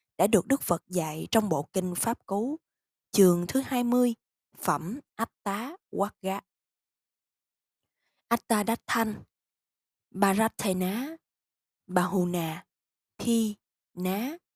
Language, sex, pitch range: Vietnamese, female, 170-240 Hz